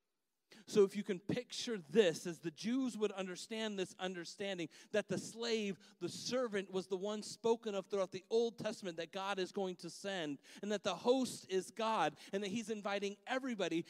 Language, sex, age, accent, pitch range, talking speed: English, male, 40-59, American, 175-215 Hz, 190 wpm